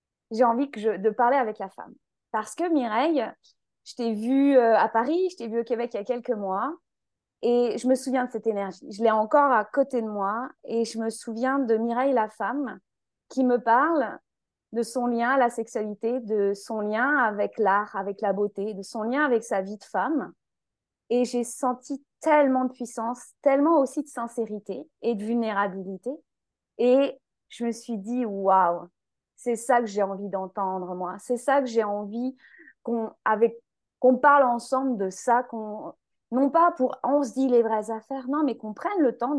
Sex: female